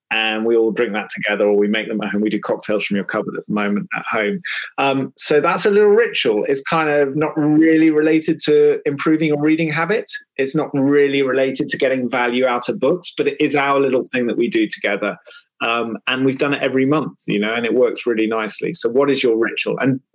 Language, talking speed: English, 240 wpm